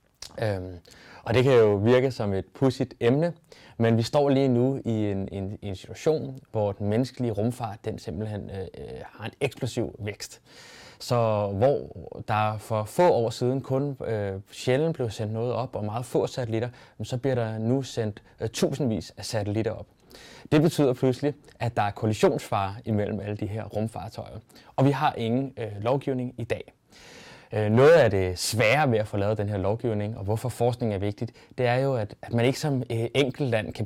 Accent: native